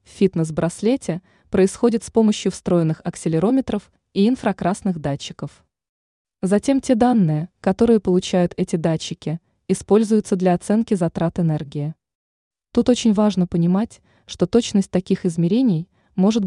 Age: 20-39